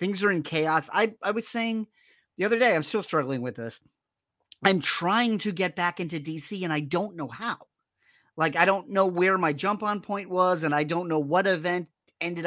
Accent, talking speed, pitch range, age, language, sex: American, 215 wpm, 150-210 Hz, 40-59, English, male